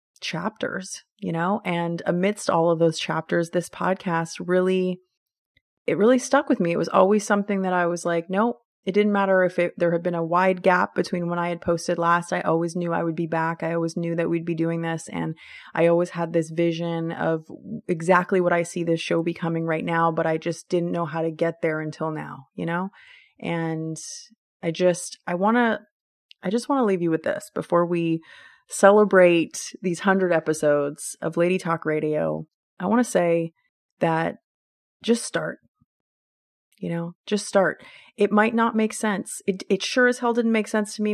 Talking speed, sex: 200 wpm, female